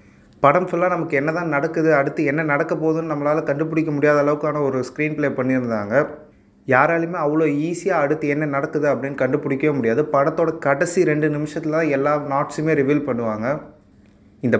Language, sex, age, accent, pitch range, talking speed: Tamil, male, 20-39, native, 135-155 Hz, 150 wpm